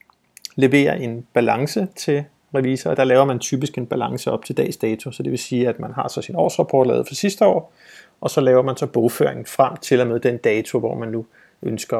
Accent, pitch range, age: native, 120-140 Hz, 30-49